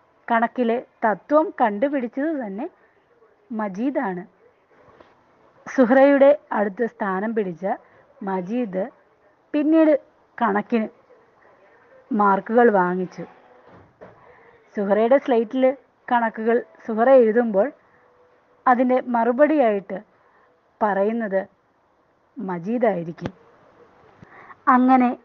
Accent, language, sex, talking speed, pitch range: native, Malayalam, female, 55 wpm, 195-260 Hz